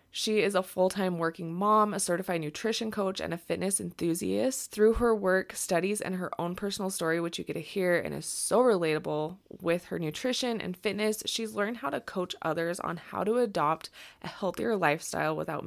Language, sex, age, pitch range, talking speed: English, female, 20-39, 165-210 Hz, 195 wpm